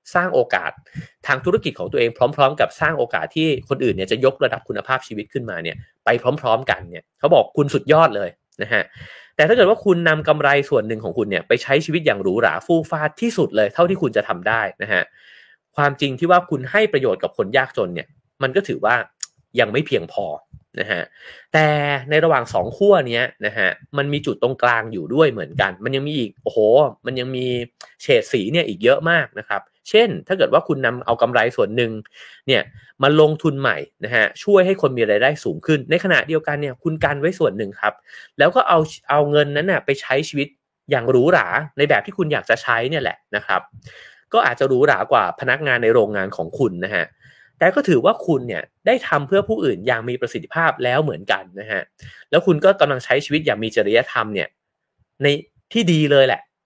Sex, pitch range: male, 130-165 Hz